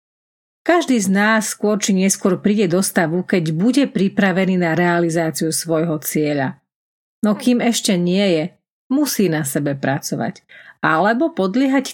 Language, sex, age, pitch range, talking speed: Slovak, female, 40-59, 170-230 Hz, 135 wpm